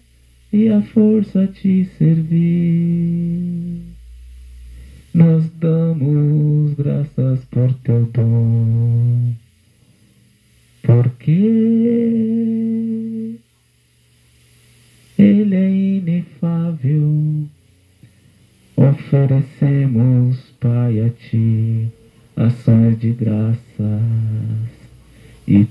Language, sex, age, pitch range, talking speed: Portuguese, male, 50-69, 115-170 Hz, 55 wpm